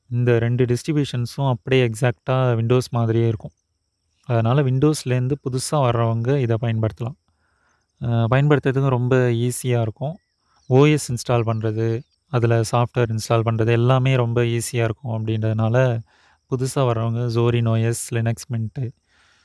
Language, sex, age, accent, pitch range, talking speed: Tamil, male, 30-49, native, 115-130 Hz, 110 wpm